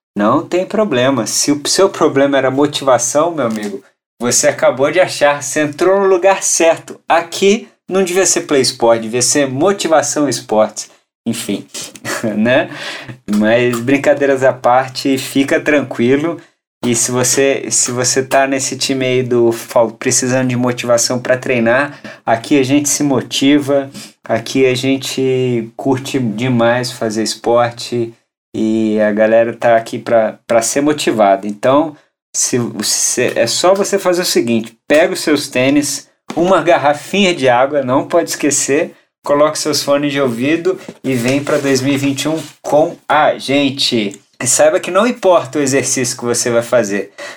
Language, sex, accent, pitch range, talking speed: Portuguese, male, Brazilian, 120-145 Hz, 145 wpm